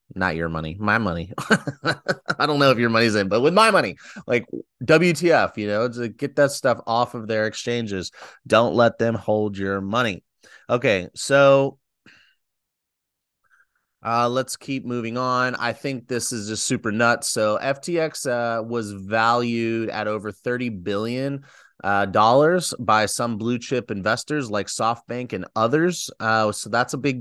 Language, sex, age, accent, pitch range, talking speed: English, male, 30-49, American, 105-135 Hz, 160 wpm